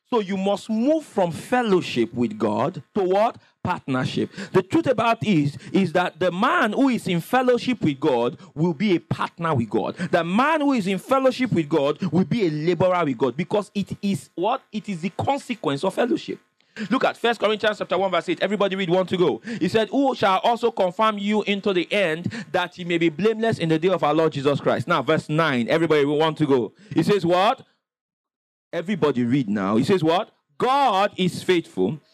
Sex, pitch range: male, 160-220 Hz